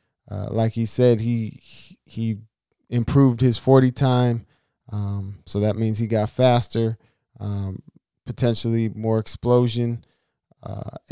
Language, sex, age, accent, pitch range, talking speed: English, male, 20-39, American, 105-125 Hz, 120 wpm